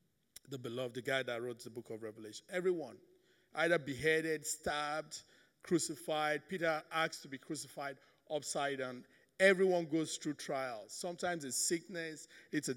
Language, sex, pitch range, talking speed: English, male, 140-175 Hz, 145 wpm